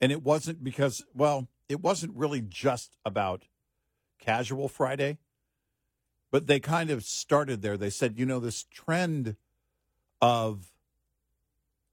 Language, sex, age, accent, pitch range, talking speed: English, male, 50-69, American, 105-135 Hz, 125 wpm